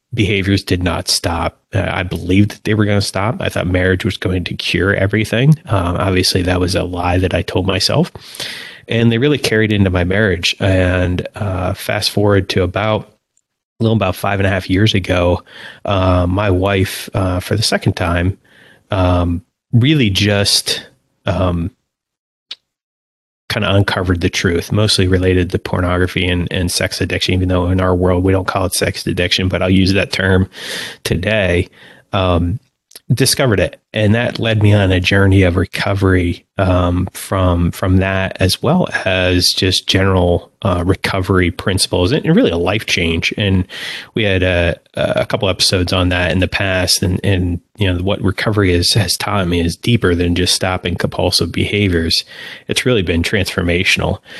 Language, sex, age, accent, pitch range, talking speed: English, male, 30-49, American, 90-100 Hz, 175 wpm